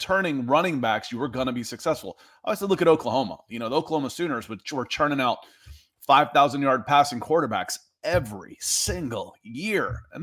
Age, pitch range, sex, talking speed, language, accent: 30-49, 120-160 Hz, male, 180 wpm, English, American